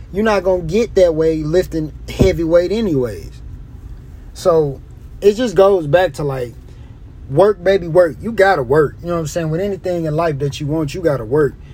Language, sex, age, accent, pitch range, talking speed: English, male, 30-49, American, 140-175 Hz, 210 wpm